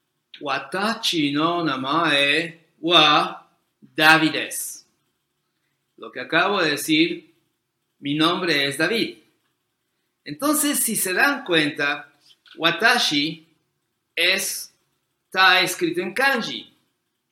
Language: Spanish